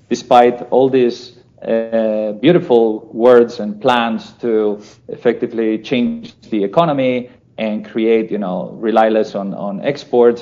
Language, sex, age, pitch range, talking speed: English, male, 40-59, 105-130 Hz, 125 wpm